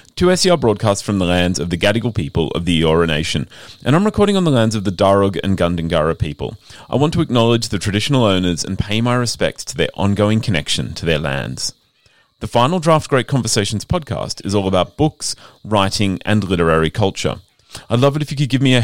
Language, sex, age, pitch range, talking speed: English, male, 30-49, 95-135 Hz, 215 wpm